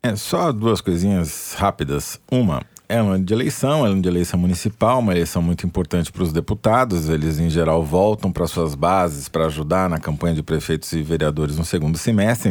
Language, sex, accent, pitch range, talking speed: Portuguese, male, Brazilian, 85-110 Hz, 200 wpm